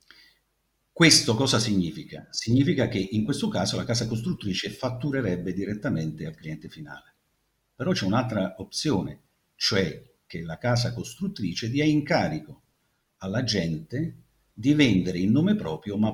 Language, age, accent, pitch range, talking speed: Italian, 50-69, native, 95-135 Hz, 125 wpm